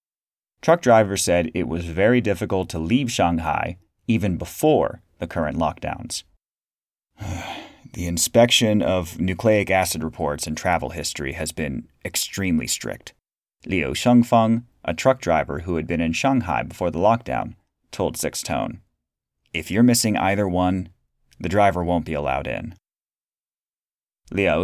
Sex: male